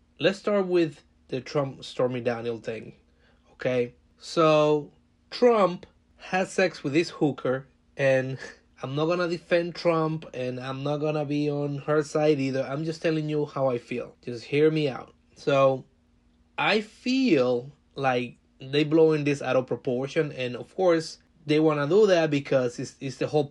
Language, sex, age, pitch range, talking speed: English, male, 30-49, 130-165 Hz, 170 wpm